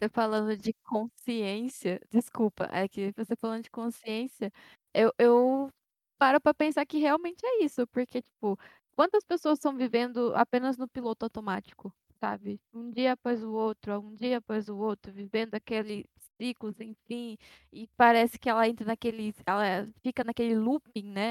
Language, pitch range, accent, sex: Portuguese, 220-290 Hz, Brazilian, female